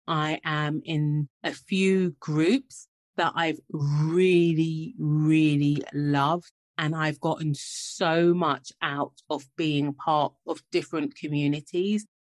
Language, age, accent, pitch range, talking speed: English, 30-49, British, 145-185 Hz, 115 wpm